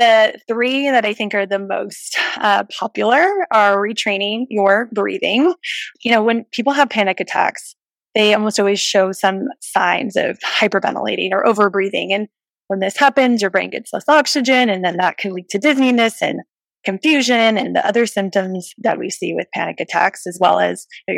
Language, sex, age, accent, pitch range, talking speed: English, female, 20-39, American, 200-245 Hz, 180 wpm